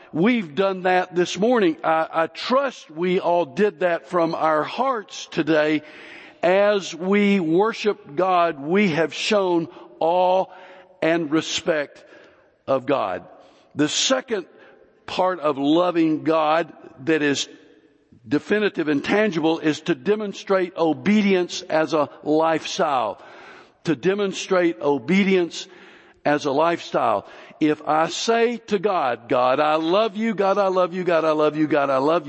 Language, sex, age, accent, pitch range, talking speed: English, male, 60-79, American, 155-200 Hz, 135 wpm